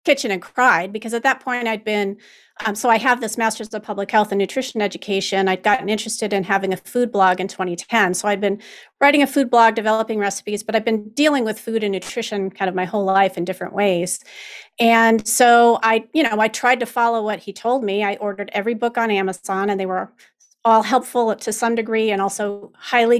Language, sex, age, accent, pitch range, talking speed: English, female, 30-49, American, 200-230 Hz, 220 wpm